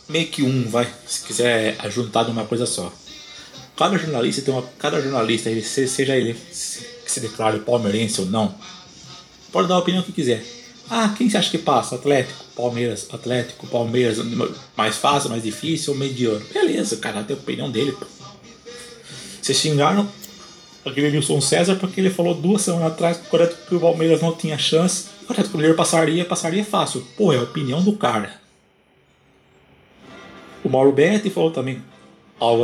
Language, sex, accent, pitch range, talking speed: Portuguese, male, Brazilian, 120-180 Hz, 165 wpm